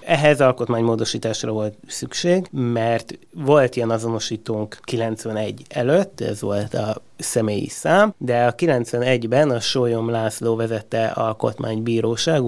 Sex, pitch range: male, 115-135 Hz